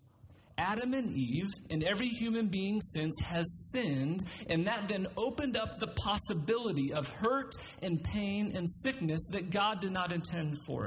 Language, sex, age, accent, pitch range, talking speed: English, male, 40-59, American, 130-190 Hz, 160 wpm